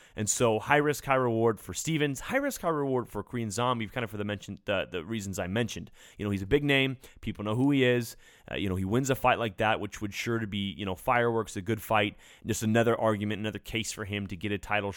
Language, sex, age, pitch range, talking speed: English, male, 30-49, 100-120 Hz, 265 wpm